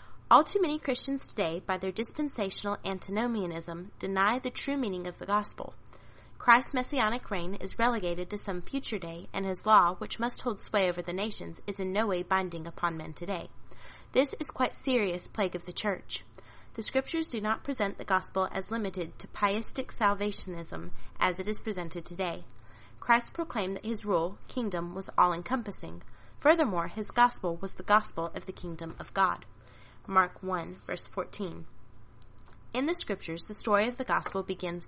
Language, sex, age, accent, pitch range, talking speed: English, female, 30-49, American, 170-215 Hz, 170 wpm